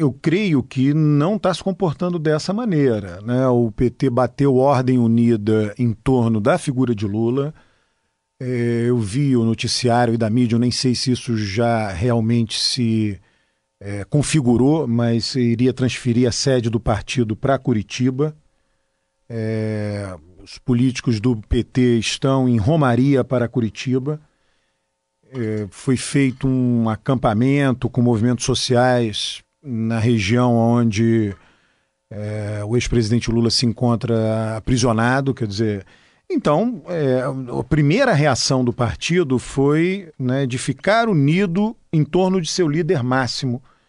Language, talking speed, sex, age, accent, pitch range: Portuguese, 130 wpm, male, 40-59, Brazilian, 115-145 Hz